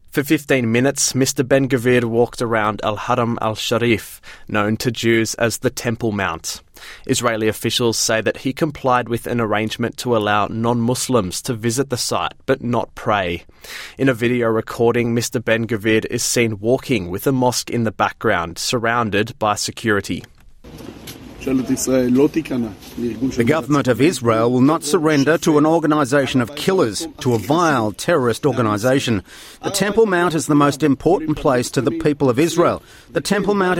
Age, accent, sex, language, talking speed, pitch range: 30-49, Australian, male, English, 155 wpm, 115-155 Hz